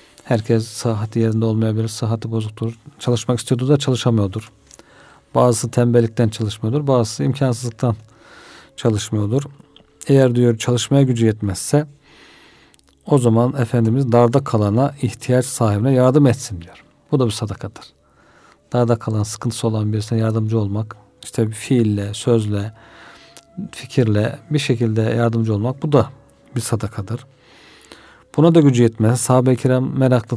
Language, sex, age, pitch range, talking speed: Turkish, male, 40-59, 110-140 Hz, 125 wpm